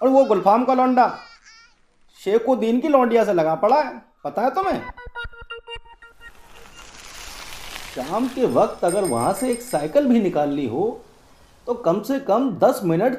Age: 40-59